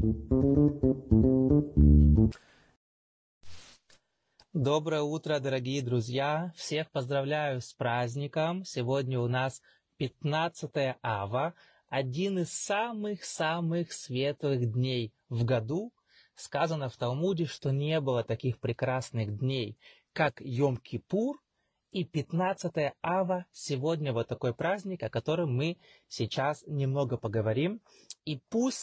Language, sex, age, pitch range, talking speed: Russian, male, 30-49, 125-170 Hz, 95 wpm